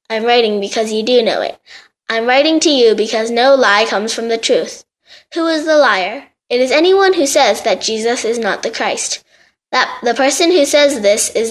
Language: Korean